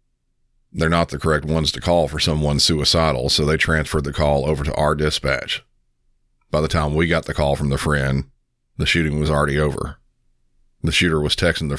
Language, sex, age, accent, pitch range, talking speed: English, male, 40-59, American, 70-80 Hz, 200 wpm